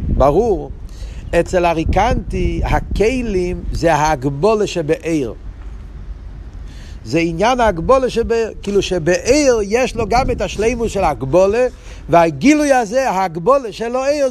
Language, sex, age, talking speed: Hebrew, male, 50-69, 100 wpm